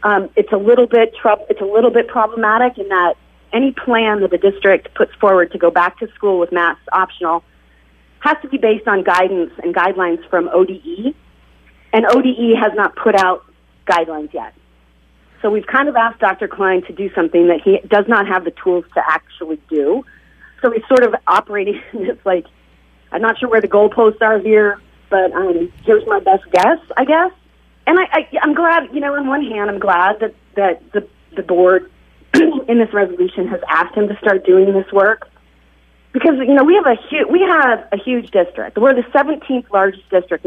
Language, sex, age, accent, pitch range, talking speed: English, female, 40-59, American, 180-250 Hz, 200 wpm